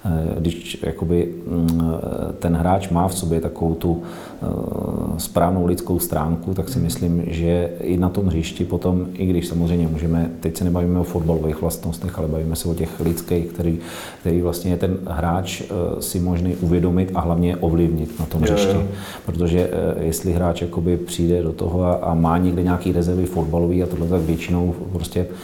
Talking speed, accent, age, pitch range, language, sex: 165 wpm, native, 40-59, 85-90 Hz, Czech, male